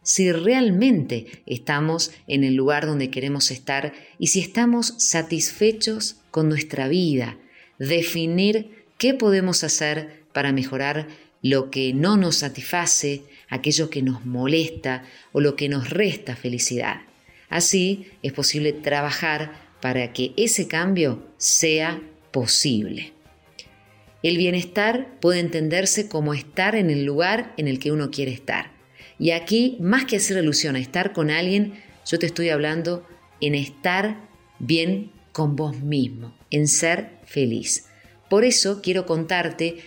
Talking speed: 135 wpm